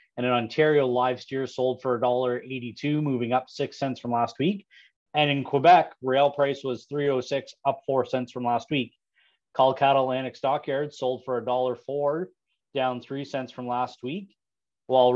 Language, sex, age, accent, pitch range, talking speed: English, male, 30-49, American, 125-140 Hz, 170 wpm